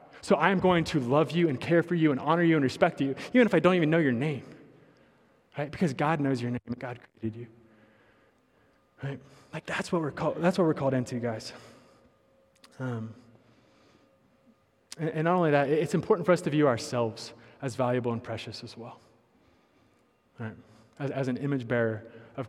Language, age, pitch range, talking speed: English, 20-39, 125-170 Hz, 185 wpm